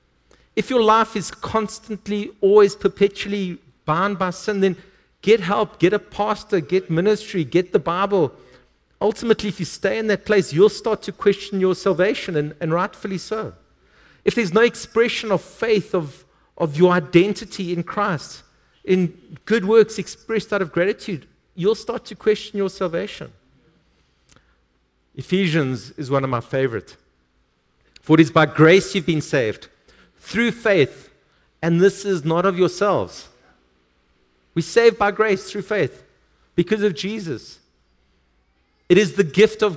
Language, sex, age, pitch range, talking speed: English, male, 50-69, 135-205 Hz, 150 wpm